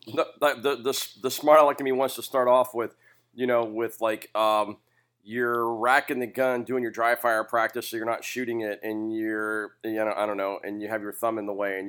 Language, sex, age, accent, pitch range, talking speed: English, male, 40-59, American, 100-120 Hz, 235 wpm